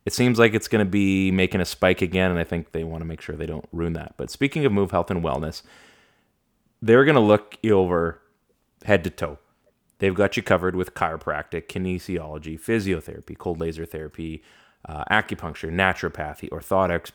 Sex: male